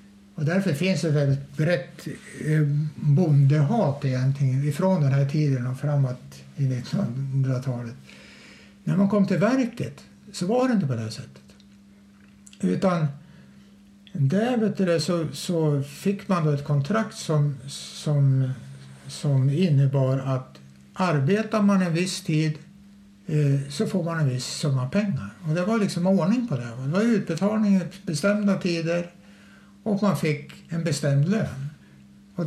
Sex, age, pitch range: male, 60-79, 135-195 Hz